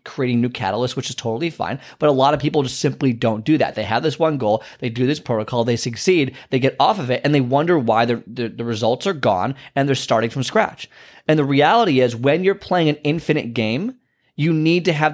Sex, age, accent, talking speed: male, 30-49, American, 245 wpm